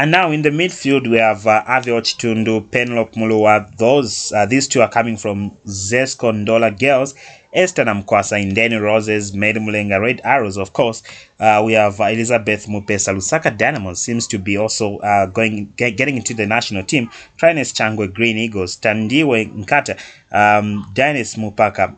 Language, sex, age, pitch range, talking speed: English, male, 20-39, 100-120 Hz, 160 wpm